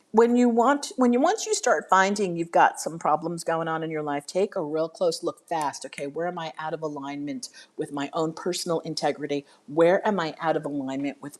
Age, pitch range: 50-69, 150-185 Hz